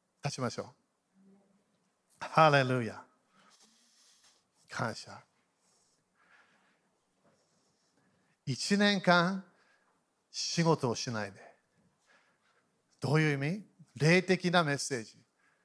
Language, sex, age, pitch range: Japanese, male, 50-69, 145-215 Hz